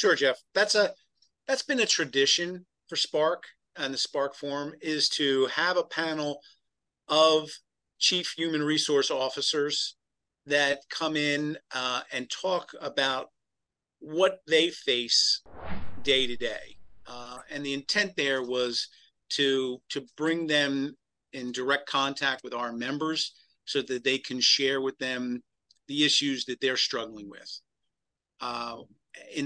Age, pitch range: 50-69, 130-155 Hz